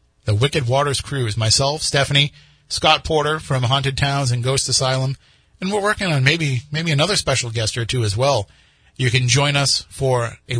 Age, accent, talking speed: 30-49, American, 185 wpm